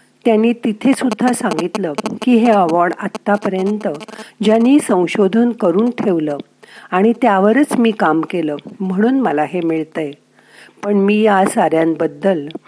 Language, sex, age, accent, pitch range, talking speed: Marathi, female, 50-69, native, 165-225 Hz, 65 wpm